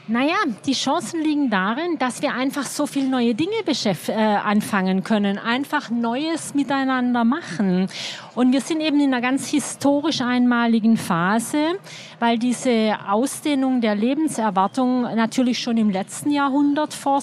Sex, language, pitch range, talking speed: female, German, 210-265 Hz, 145 wpm